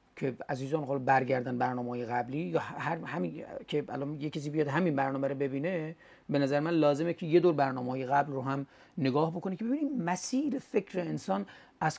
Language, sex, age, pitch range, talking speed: Persian, male, 40-59, 140-195 Hz, 180 wpm